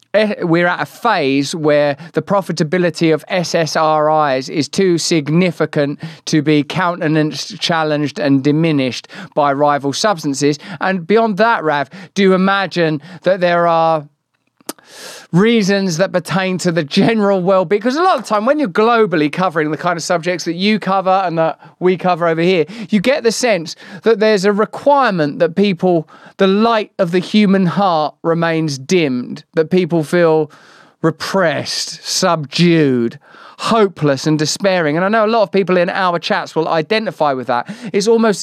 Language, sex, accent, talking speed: English, male, British, 160 wpm